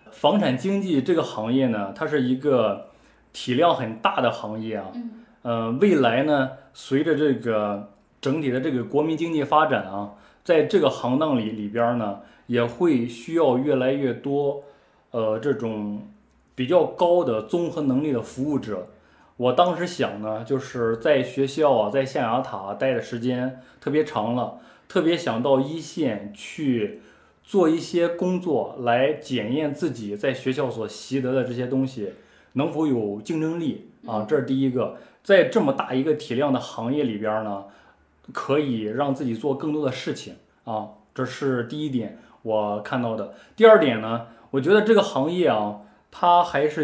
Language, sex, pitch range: Chinese, male, 110-155 Hz